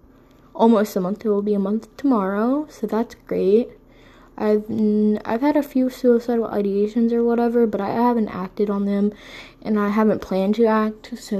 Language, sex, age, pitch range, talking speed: English, female, 10-29, 210-250 Hz, 180 wpm